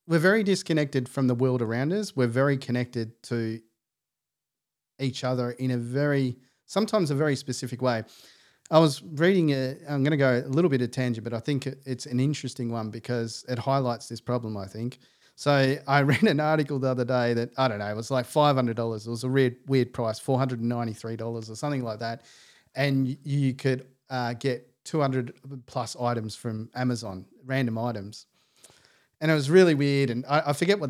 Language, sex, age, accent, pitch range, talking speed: English, male, 40-59, Australian, 115-140 Hz, 190 wpm